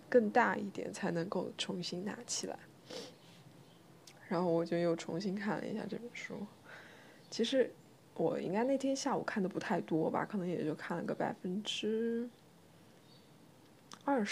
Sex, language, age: female, Chinese, 20-39